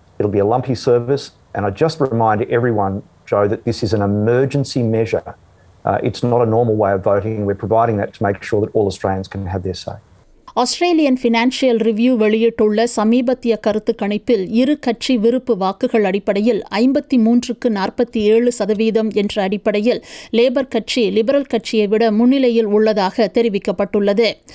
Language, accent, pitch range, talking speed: Tamil, native, 145-240 Hz, 145 wpm